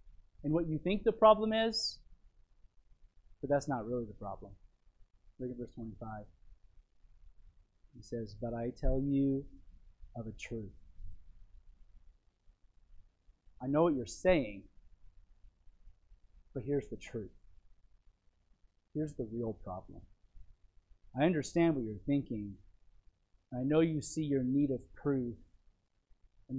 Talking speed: 120 wpm